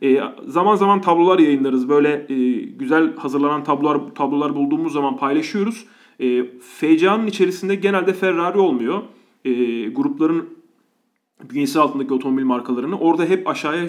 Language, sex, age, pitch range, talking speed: Turkish, male, 30-49, 140-210 Hz, 125 wpm